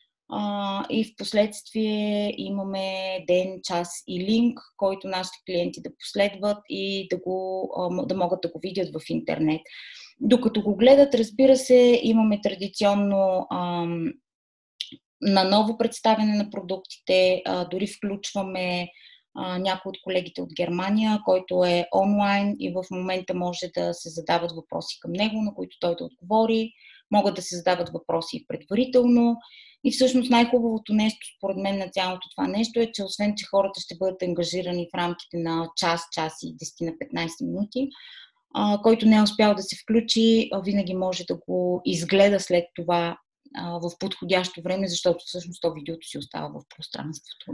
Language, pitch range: Bulgarian, 180-220 Hz